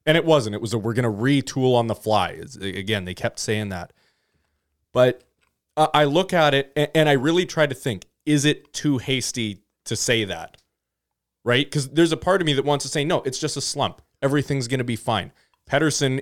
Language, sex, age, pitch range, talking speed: English, male, 20-39, 105-145 Hz, 220 wpm